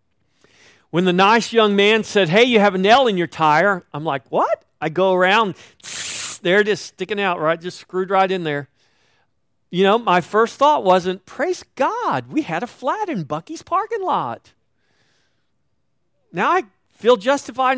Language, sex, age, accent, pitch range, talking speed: English, male, 40-59, American, 140-195 Hz, 170 wpm